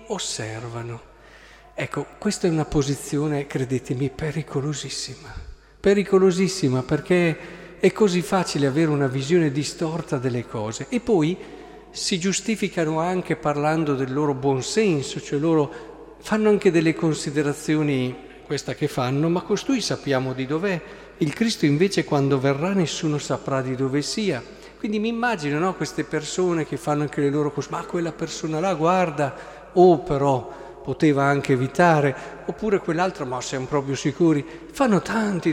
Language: Italian